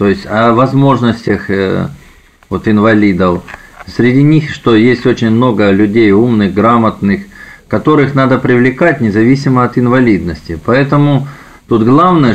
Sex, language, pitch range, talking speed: male, Russian, 105-125 Hz, 115 wpm